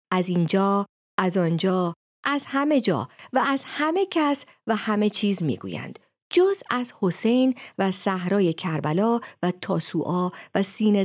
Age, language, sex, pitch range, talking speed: 50-69, Persian, female, 175-265 Hz, 135 wpm